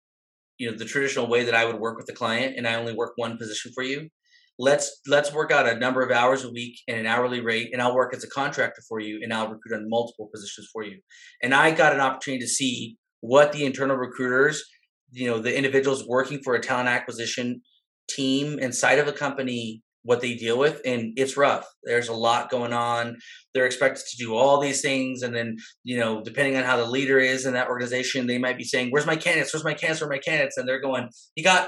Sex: male